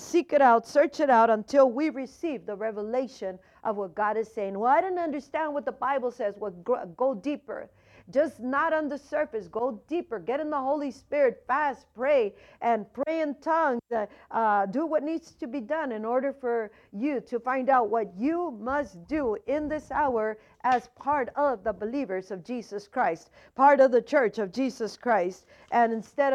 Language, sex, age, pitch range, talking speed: English, female, 50-69, 220-280 Hz, 190 wpm